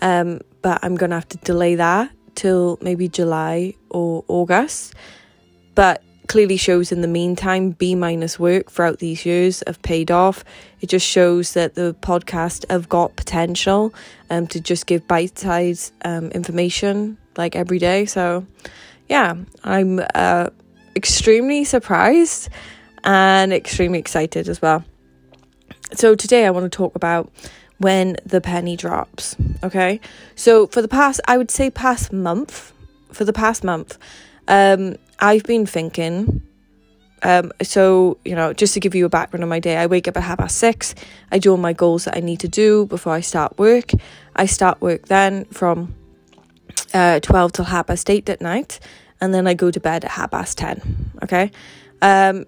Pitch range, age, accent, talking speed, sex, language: 170-195 Hz, 10-29, British, 165 wpm, female, English